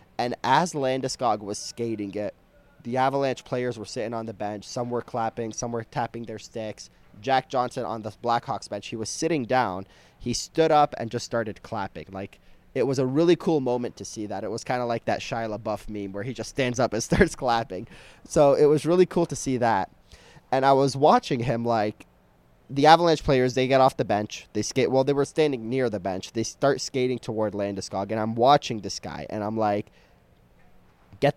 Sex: male